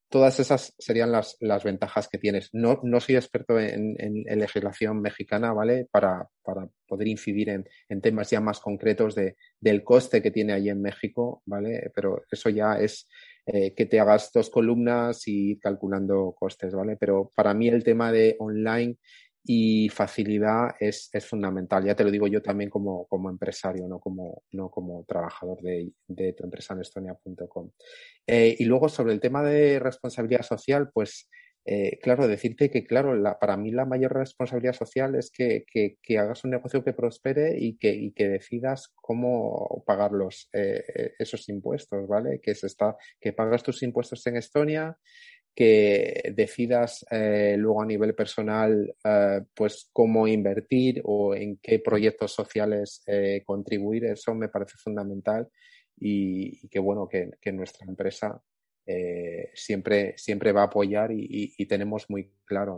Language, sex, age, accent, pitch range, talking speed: Spanish, male, 30-49, Spanish, 100-120 Hz, 160 wpm